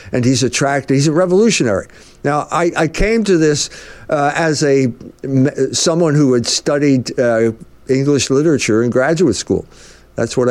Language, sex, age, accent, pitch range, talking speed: English, male, 60-79, American, 115-160 Hz, 155 wpm